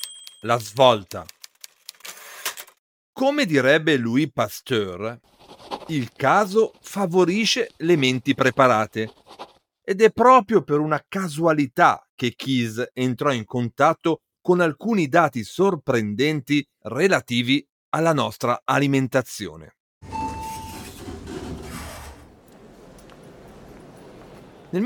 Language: Italian